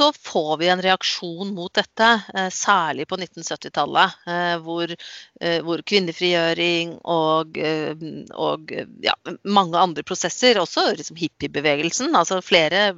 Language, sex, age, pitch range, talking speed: Danish, female, 40-59, 165-220 Hz, 115 wpm